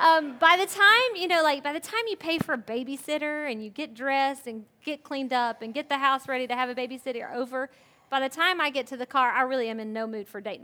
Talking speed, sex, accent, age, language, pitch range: 275 wpm, female, American, 30-49, English, 235-275 Hz